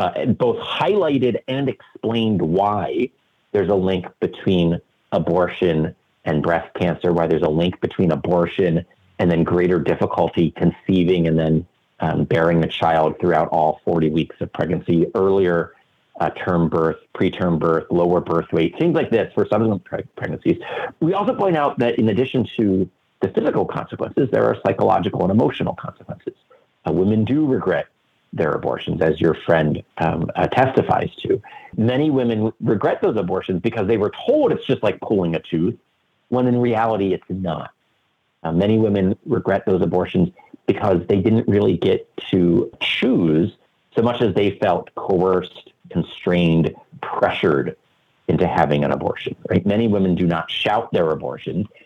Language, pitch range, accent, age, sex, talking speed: English, 85-110 Hz, American, 40-59, male, 155 wpm